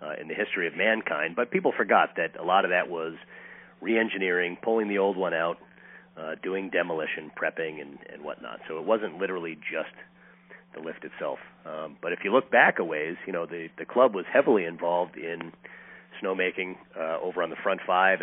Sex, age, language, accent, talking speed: male, 40-59, English, American, 200 wpm